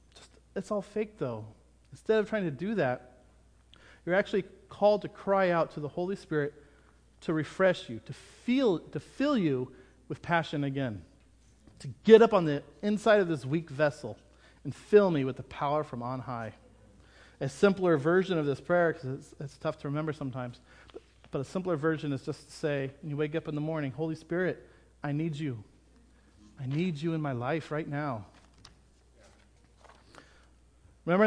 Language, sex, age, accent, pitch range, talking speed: English, male, 40-59, American, 120-170 Hz, 180 wpm